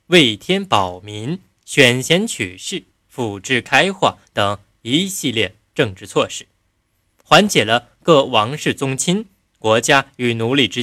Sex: male